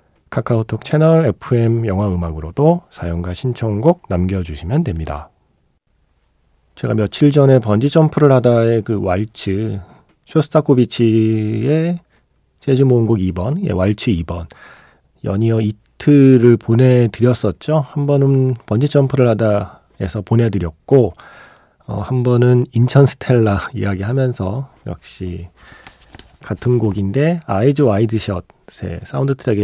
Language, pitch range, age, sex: Korean, 100-140 Hz, 40-59, male